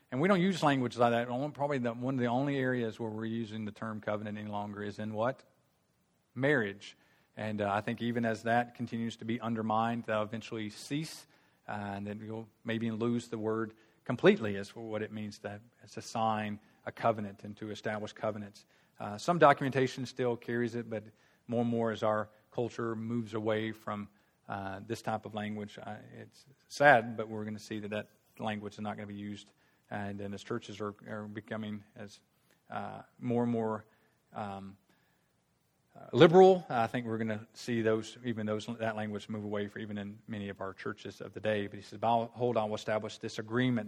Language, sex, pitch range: English, male, 105-120 Hz